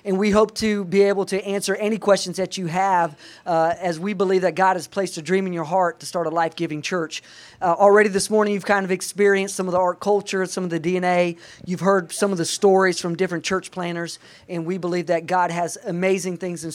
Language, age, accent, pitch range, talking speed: English, 40-59, American, 160-190 Hz, 240 wpm